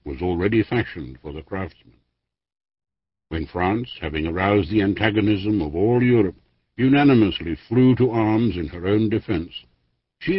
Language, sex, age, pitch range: English, male, 60-79, 75-115 Hz